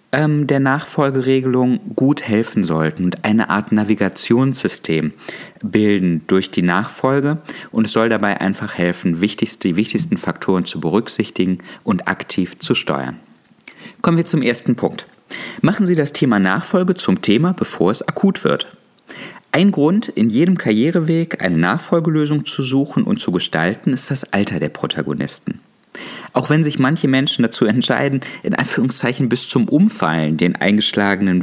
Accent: German